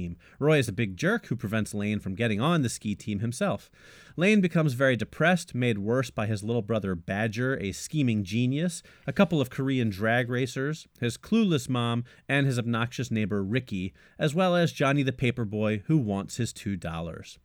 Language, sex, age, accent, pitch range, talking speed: English, male, 30-49, American, 105-140 Hz, 185 wpm